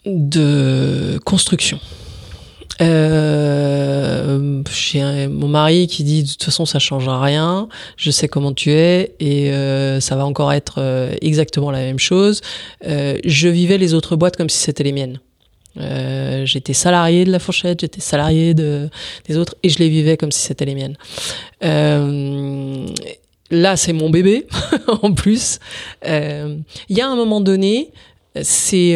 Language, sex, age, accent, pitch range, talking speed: English, female, 30-49, French, 145-185 Hz, 165 wpm